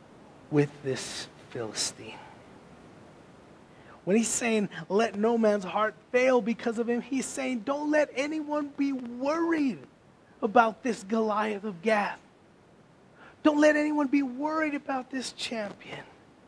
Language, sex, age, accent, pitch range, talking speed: English, male, 30-49, American, 175-235 Hz, 125 wpm